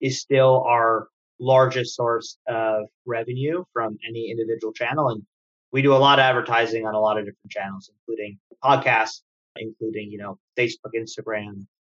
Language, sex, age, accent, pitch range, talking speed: English, male, 30-49, American, 110-140 Hz, 160 wpm